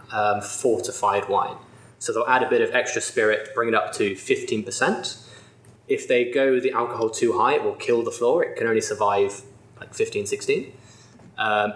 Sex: male